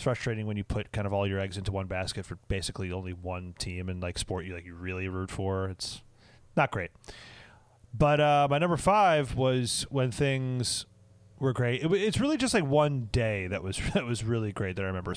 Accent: American